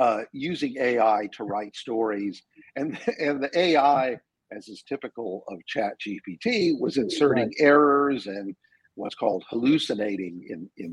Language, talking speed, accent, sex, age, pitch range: English, 135 wpm, American, male, 50-69, 110-160 Hz